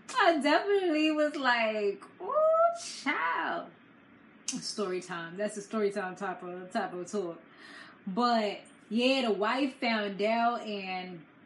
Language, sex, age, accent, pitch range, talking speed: English, female, 20-39, American, 200-250 Hz, 125 wpm